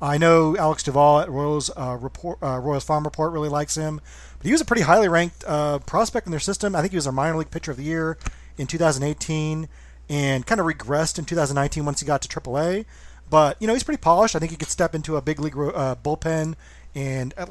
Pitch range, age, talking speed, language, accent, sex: 140-165 Hz, 30-49, 240 wpm, English, American, male